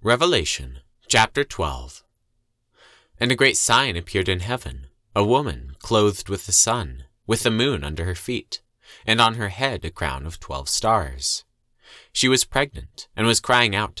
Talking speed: 165 wpm